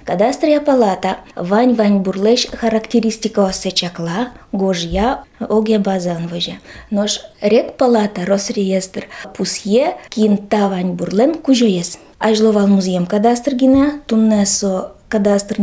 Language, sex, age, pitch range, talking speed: Russian, female, 20-39, 190-225 Hz, 105 wpm